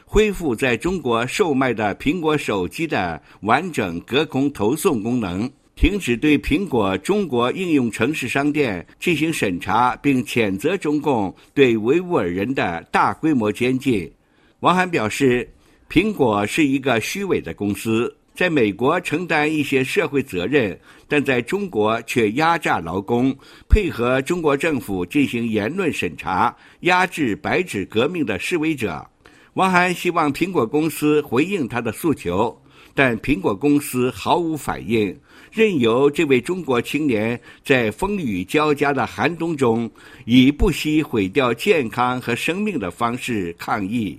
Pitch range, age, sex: 120-165 Hz, 60-79, male